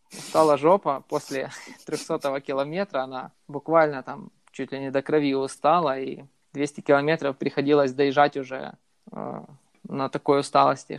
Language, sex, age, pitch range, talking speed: Russian, male, 20-39, 135-155 Hz, 130 wpm